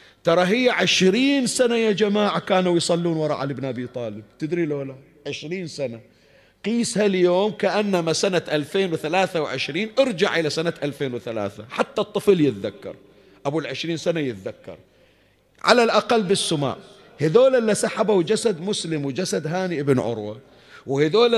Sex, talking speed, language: male, 130 wpm, Arabic